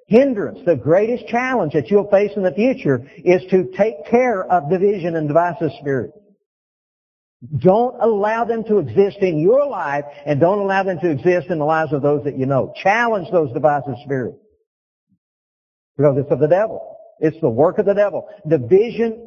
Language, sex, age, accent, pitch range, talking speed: English, male, 60-79, American, 155-220 Hz, 180 wpm